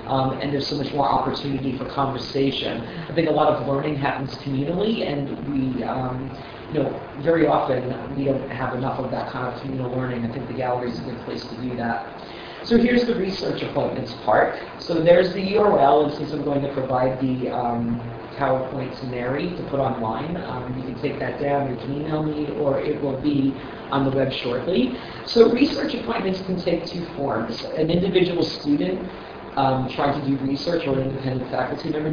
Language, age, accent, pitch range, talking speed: English, 40-59, American, 130-155 Hz, 200 wpm